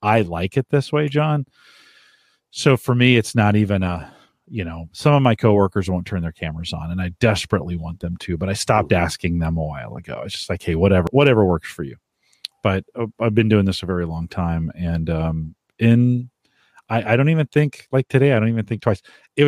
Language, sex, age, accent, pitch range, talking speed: English, male, 40-59, American, 90-130 Hz, 225 wpm